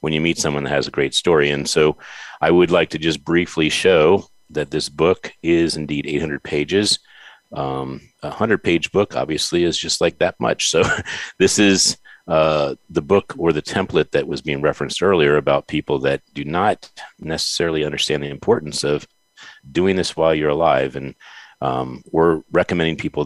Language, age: English, 40-59